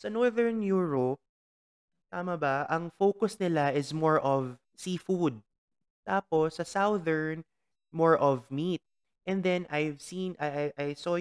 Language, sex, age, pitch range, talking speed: English, male, 20-39, 110-170 Hz, 135 wpm